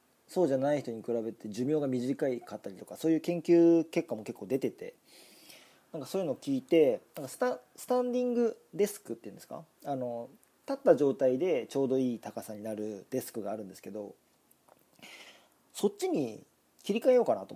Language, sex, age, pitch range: Japanese, male, 40-59, 125-195 Hz